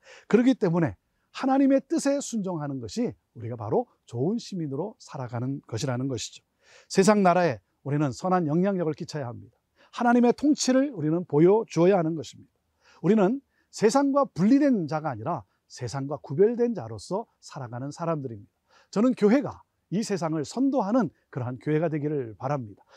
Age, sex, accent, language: 40-59, male, native, Korean